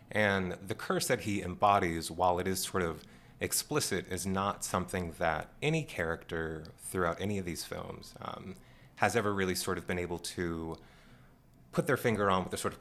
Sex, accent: male, American